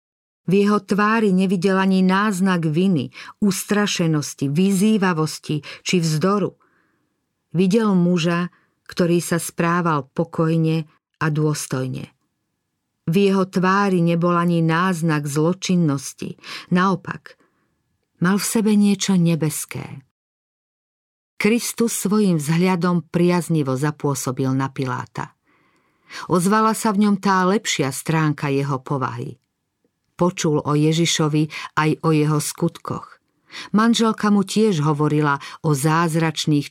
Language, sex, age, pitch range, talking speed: Slovak, female, 50-69, 150-190 Hz, 100 wpm